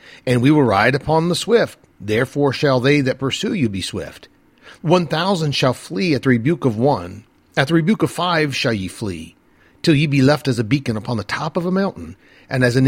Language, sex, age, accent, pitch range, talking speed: English, male, 50-69, American, 115-155 Hz, 225 wpm